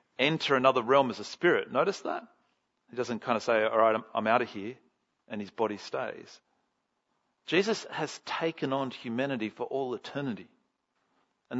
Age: 40-59